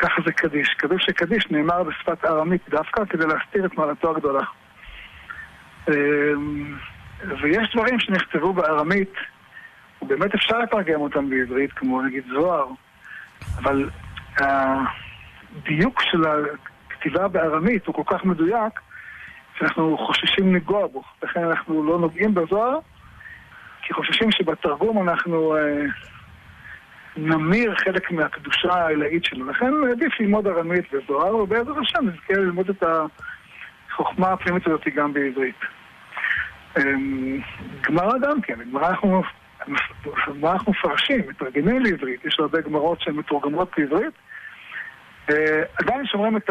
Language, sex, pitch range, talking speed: Hebrew, male, 150-205 Hz, 110 wpm